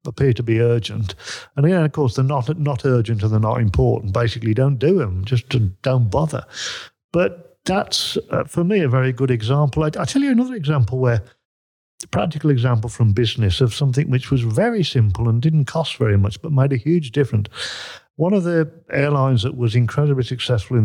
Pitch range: 110-145 Hz